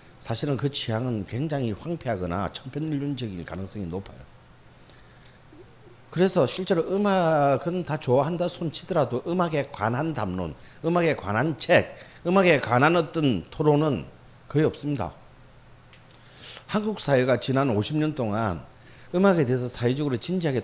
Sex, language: male, Korean